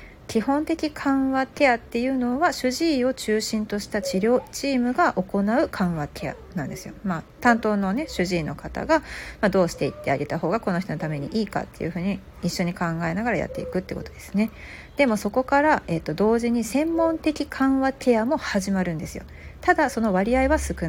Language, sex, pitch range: Japanese, female, 190-275 Hz